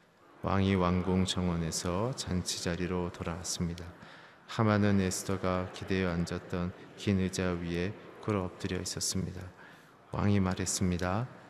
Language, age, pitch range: Korean, 30-49, 90-105 Hz